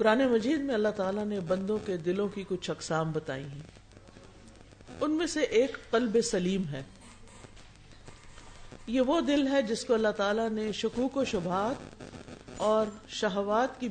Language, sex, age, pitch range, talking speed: Urdu, female, 50-69, 165-225 Hz, 155 wpm